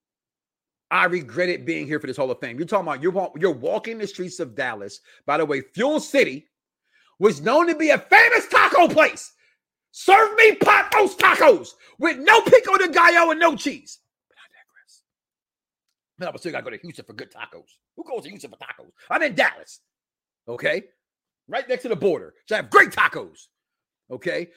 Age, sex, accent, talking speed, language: 40-59, male, American, 200 wpm, English